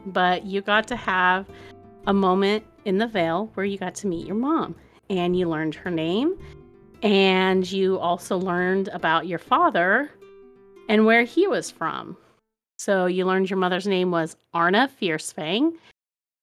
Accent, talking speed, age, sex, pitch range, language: American, 155 wpm, 30-49, female, 180-220 Hz, English